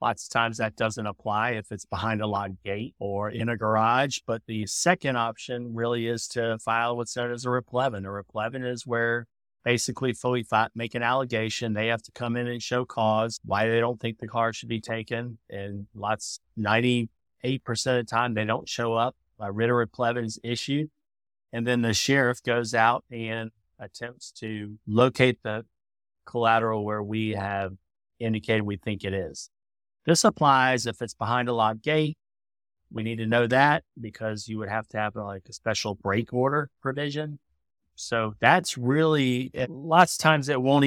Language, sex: English, male